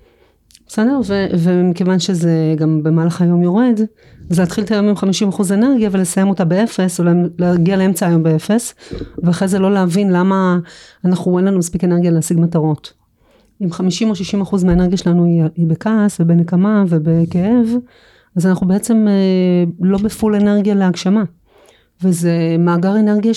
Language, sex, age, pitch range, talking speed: Hebrew, female, 30-49, 175-210 Hz, 140 wpm